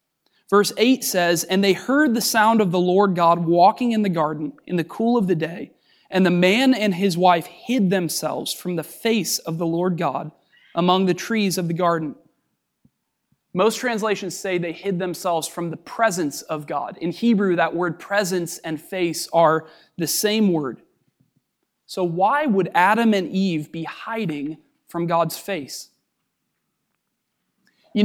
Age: 20-39